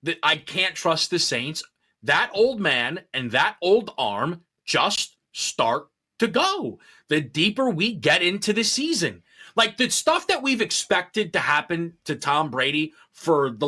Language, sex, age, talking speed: English, male, 30-49, 160 wpm